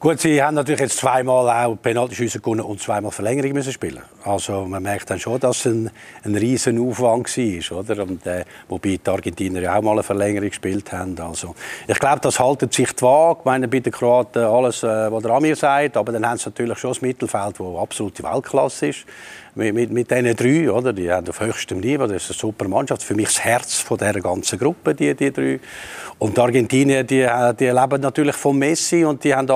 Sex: male